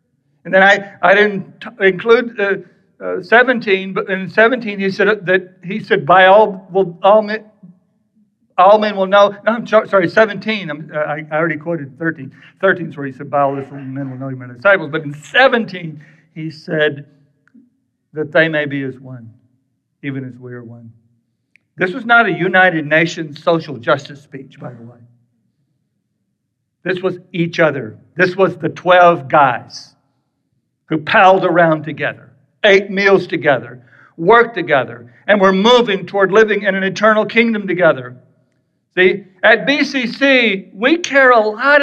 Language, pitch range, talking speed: English, 145-210 Hz, 165 wpm